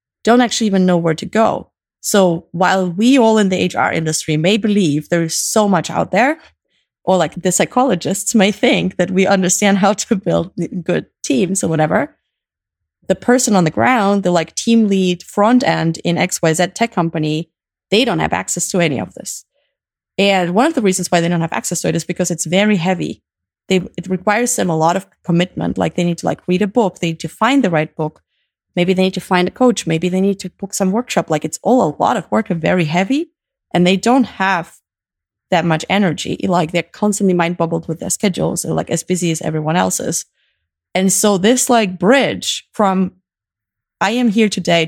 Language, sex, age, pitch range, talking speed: English, female, 30-49, 165-205 Hz, 205 wpm